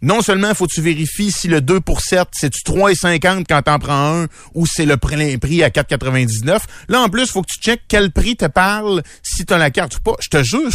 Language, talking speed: French, 250 wpm